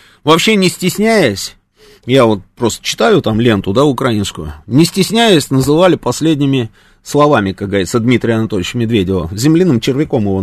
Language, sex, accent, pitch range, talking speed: Russian, male, native, 110-180 Hz, 140 wpm